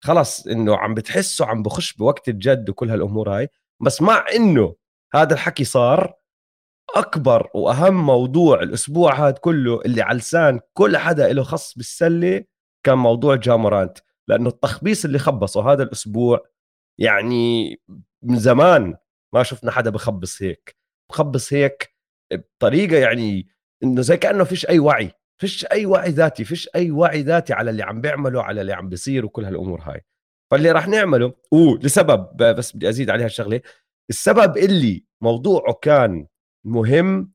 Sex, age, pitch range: male, 30-49, 110-155 Hz